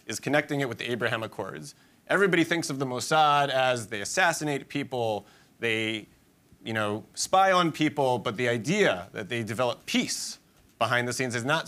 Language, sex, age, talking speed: English, male, 30-49, 175 wpm